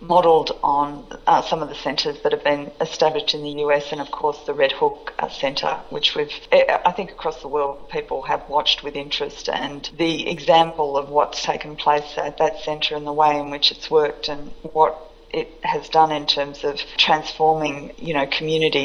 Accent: Australian